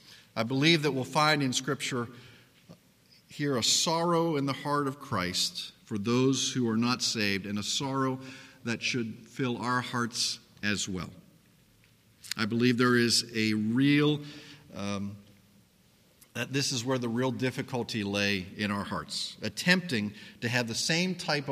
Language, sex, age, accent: English, male, 50-69, American